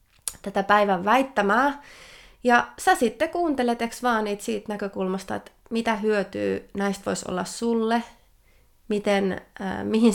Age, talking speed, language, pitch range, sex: 20-39, 120 wpm, Finnish, 195-245 Hz, female